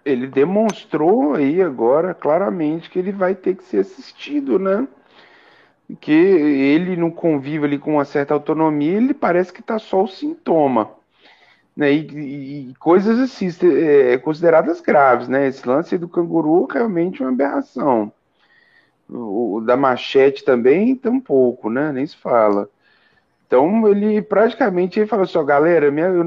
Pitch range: 145-235 Hz